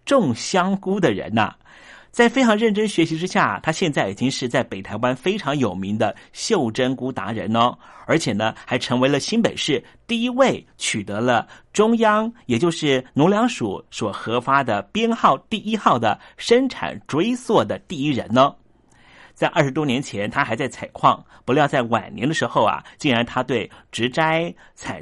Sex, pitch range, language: male, 120-190 Hz, Chinese